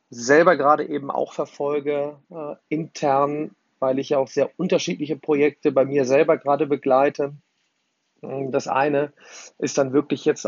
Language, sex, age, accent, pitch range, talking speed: German, male, 40-59, German, 140-155 Hz, 135 wpm